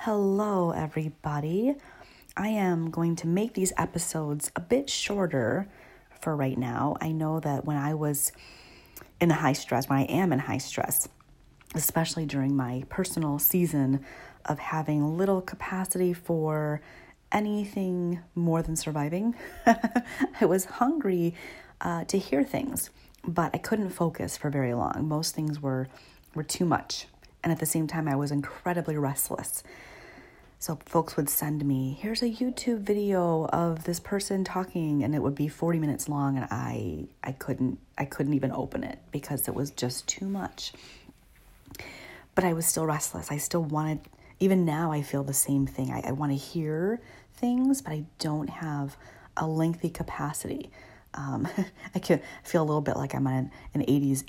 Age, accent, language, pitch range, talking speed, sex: 30-49, American, English, 140-180 Hz, 165 wpm, female